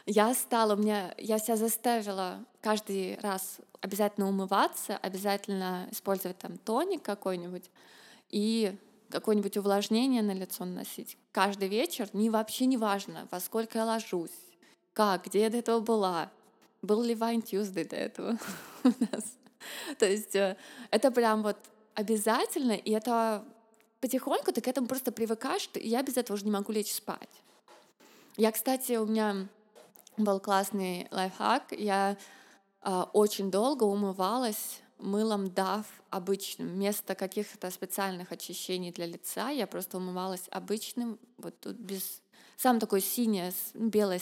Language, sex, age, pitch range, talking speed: Russian, female, 20-39, 195-225 Hz, 135 wpm